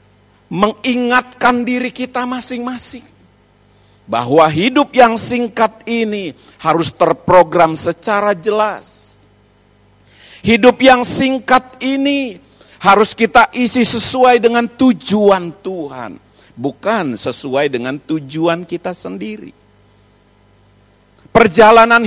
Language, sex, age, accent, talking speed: Indonesian, male, 50-69, native, 85 wpm